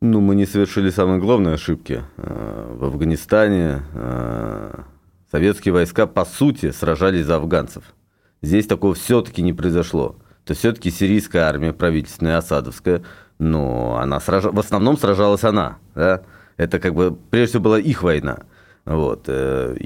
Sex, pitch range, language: male, 90-115 Hz, Russian